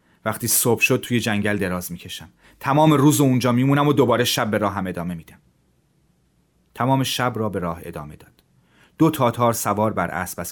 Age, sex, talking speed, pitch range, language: 30-49, male, 195 wpm, 90-125 Hz, Persian